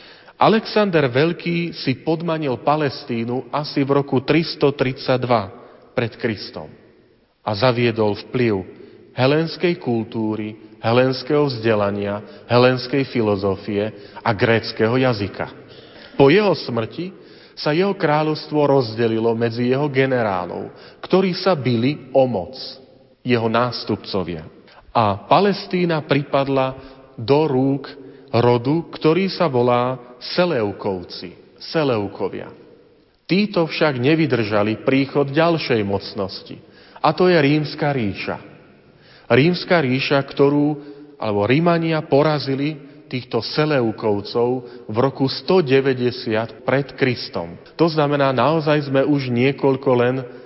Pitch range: 115-145 Hz